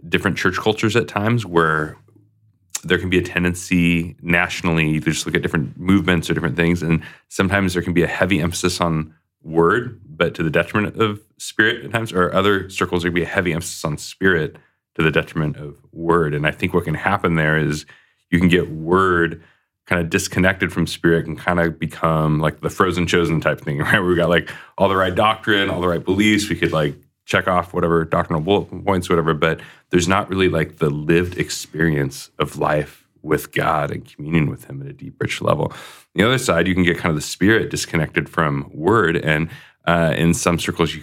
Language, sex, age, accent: English, male, 20-39, American